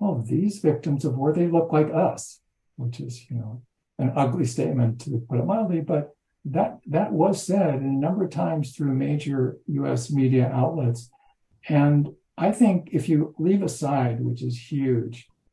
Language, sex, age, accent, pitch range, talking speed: English, male, 60-79, American, 125-155 Hz, 160 wpm